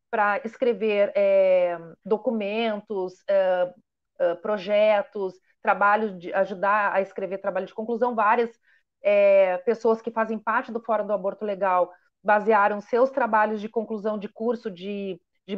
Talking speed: 130 wpm